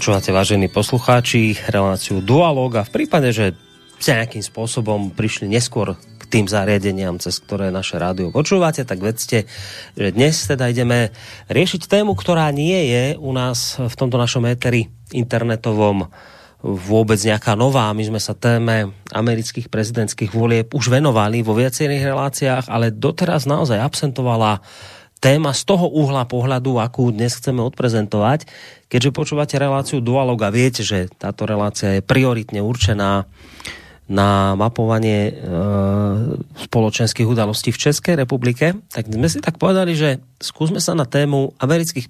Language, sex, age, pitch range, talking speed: Slovak, male, 30-49, 105-135 Hz, 140 wpm